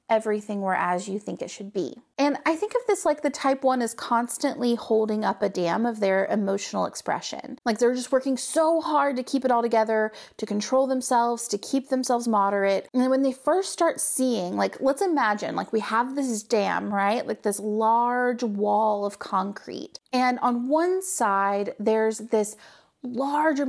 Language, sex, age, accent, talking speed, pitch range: English, female, 30-49, American, 185 wpm, 210-270 Hz